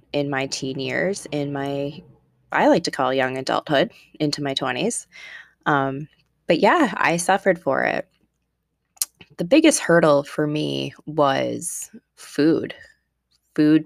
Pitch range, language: 130-150 Hz, English